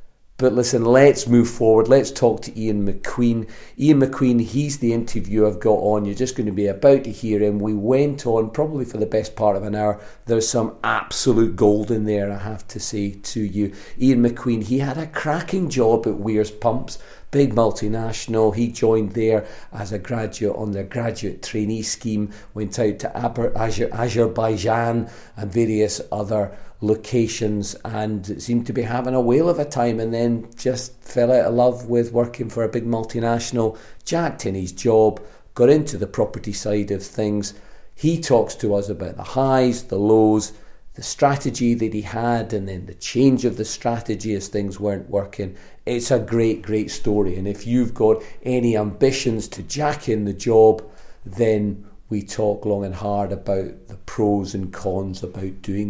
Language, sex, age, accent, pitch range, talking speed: English, male, 40-59, British, 105-120 Hz, 180 wpm